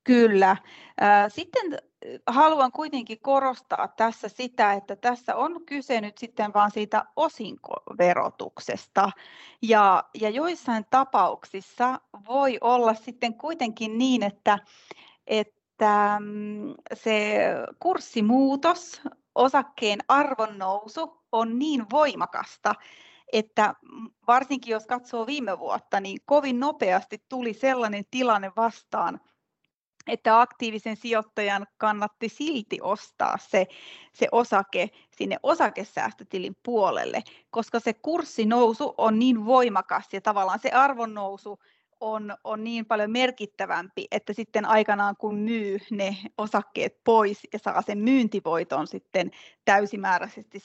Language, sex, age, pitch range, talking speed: Finnish, female, 30-49, 205-255 Hz, 105 wpm